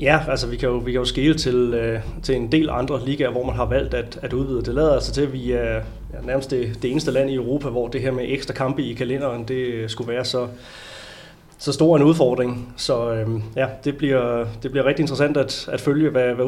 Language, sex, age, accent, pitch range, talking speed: Danish, male, 30-49, native, 120-140 Hz, 245 wpm